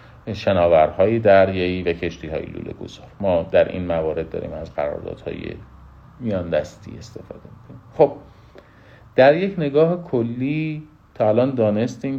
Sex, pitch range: male, 80-110 Hz